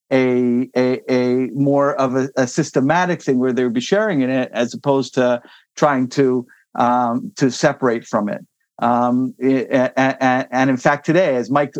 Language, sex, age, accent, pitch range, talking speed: English, male, 50-69, American, 130-160 Hz, 190 wpm